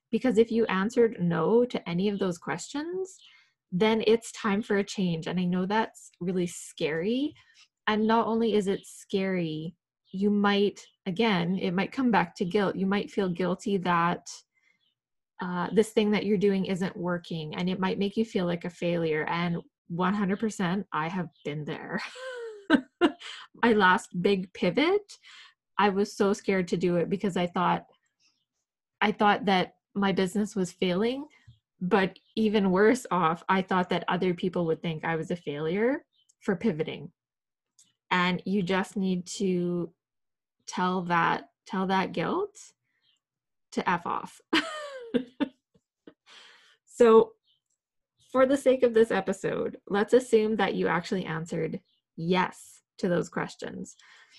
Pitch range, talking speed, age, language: 175-225 Hz, 145 wpm, 20-39, English